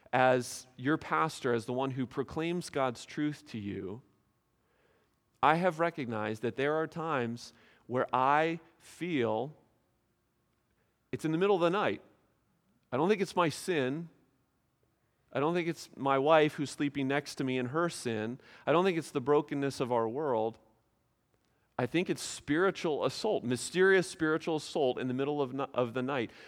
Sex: male